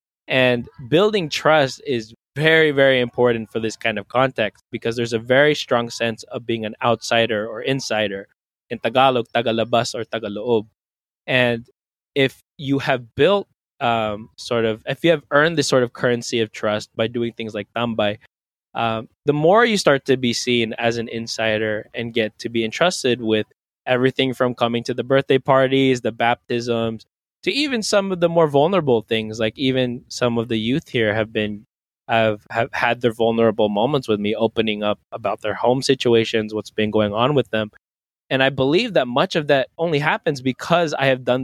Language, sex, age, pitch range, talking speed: English, male, 20-39, 115-135 Hz, 185 wpm